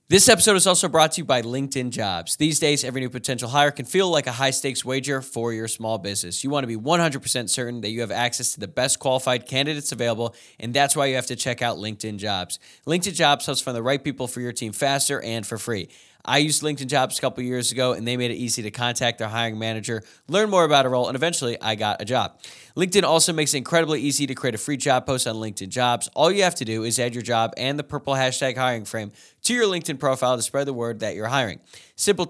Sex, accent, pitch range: male, American, 115-145 Hz